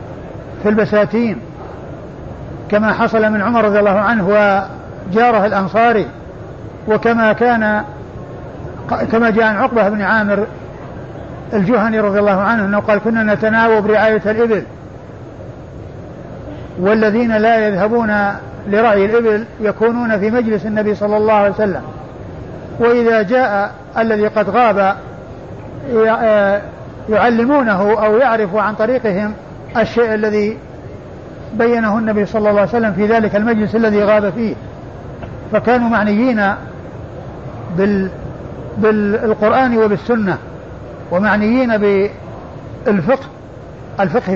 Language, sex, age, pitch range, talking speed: Arabic, male, 50-69, 200-225 Hz, 100 wpm